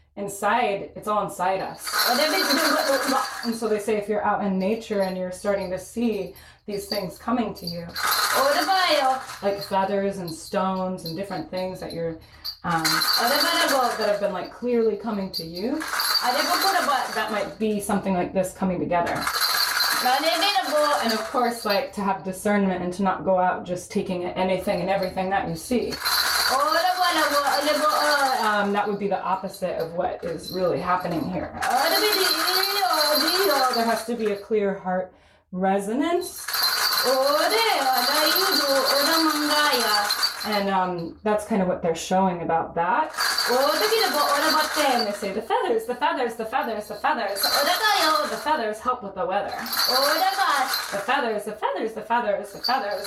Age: 20-39